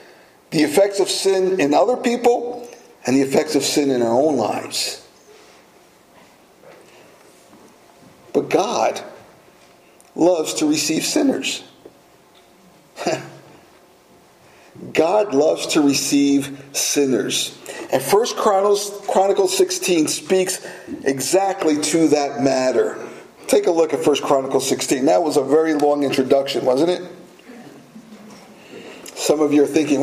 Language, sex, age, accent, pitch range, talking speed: English, male, 50-69, American, 155-245 Hz, 115 wpm